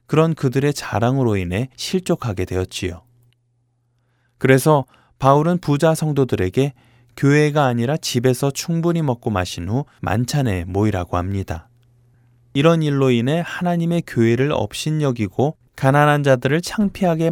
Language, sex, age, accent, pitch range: Korean, male, 20-39, native, 105-145 Hz